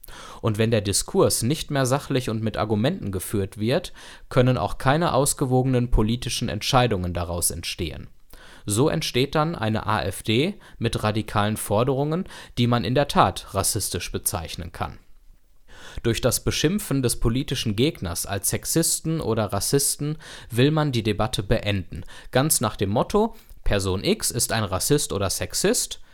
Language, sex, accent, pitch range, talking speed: German, male, German, 105-135 Hz, 140 wpm